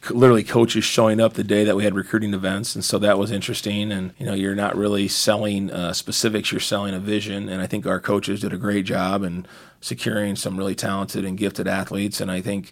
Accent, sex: American, male